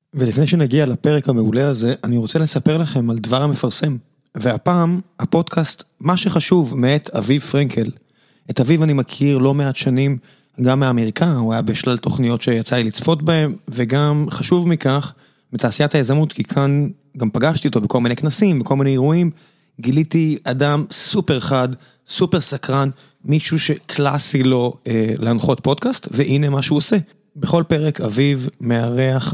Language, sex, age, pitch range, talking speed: Hebrew, male, 20-39, 130-155 Hz, 145 wpm